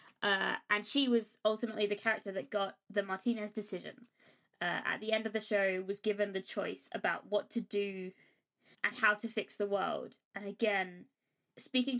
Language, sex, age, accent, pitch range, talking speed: English, female, 20-39, British, 195-220 Hz, 180 wpm